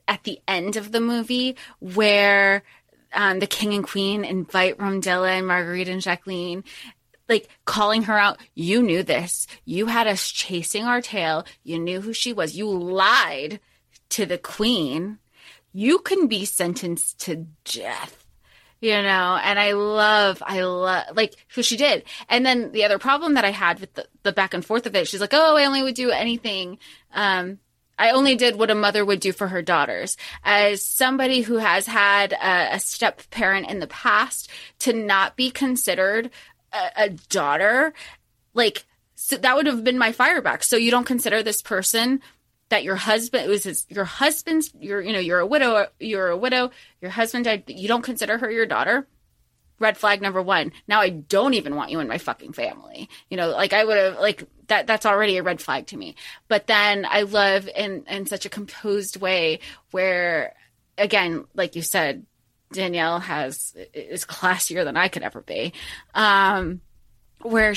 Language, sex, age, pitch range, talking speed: English, female, 20-39, 185-230 Hz, 185 wpm